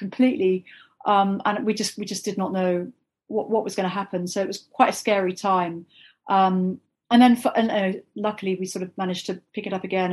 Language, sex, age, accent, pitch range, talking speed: English, female, 40-59, British, 185-220 Hz, 230 wpm